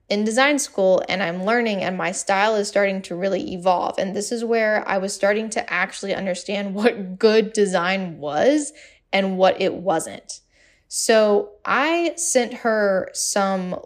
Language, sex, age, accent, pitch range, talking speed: English, female, 10-29, American, 190-235 Hz, 160 wpm